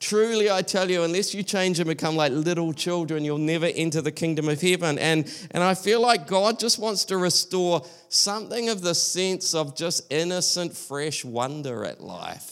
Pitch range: 135-170 Hz